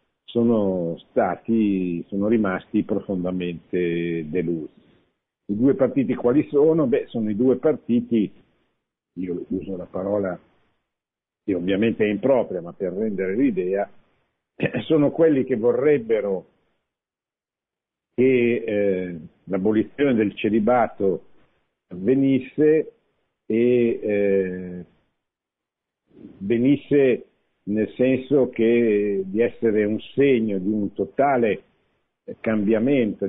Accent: native